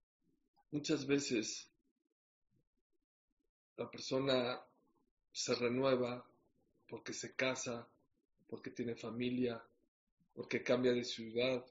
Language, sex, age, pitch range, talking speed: English, male, 40-59, 120-140 Hz, 80 wpm